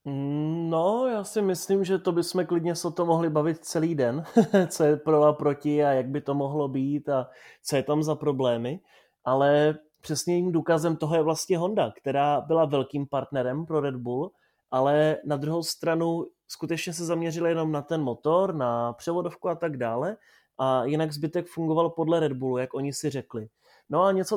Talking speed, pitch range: 185 wpm, 135-165 Hz